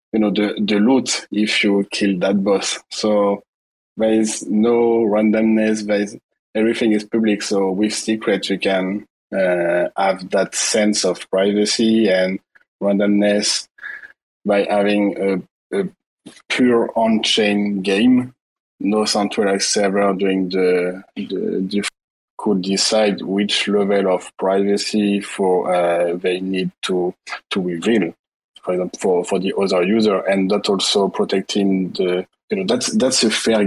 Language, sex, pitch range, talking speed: English, male, 95-110 Hz, 130 wpm